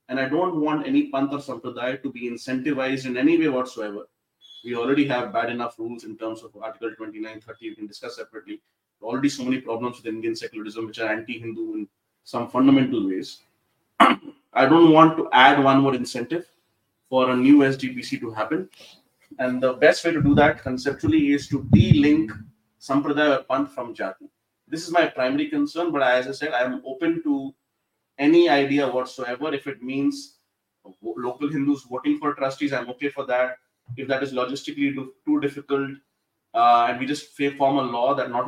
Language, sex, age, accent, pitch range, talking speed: English, male, 30-49, Indian, 125-160 Hz, 180 wpm